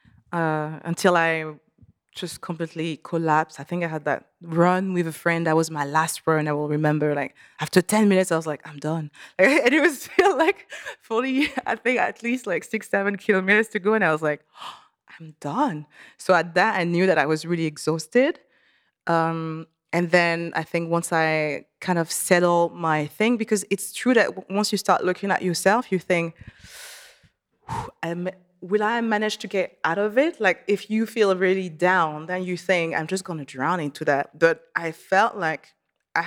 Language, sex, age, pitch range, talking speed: English, female, 20-39, 165-215 Hz, 195 wpm